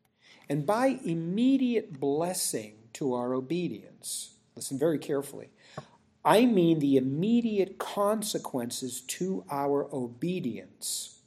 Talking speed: 95 wpm